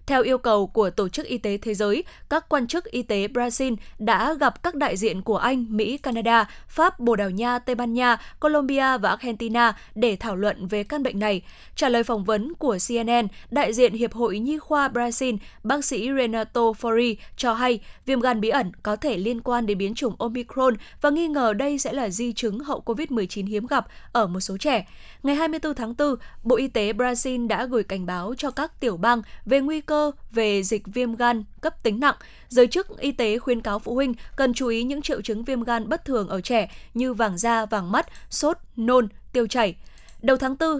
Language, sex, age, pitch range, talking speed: Vietnamese, female, 10-29, 220-265 Hz, 215 wpm